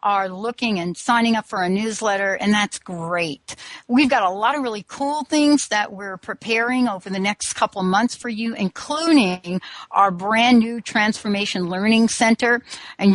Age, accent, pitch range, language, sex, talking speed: 60-79, American, 190-250 Hz, English, female, 175 wpm